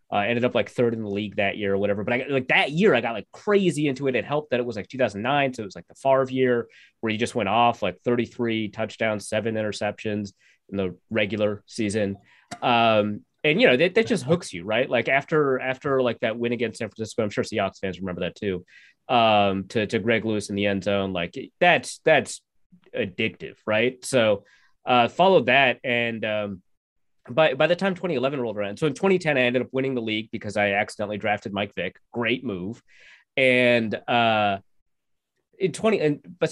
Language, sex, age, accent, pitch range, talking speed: English, male, 20-39, American, 105-135 Hz, 210 wpm